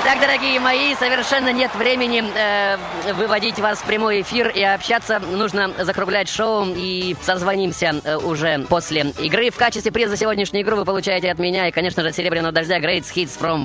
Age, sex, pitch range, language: 20-39, female, 155-205 Hz, Russian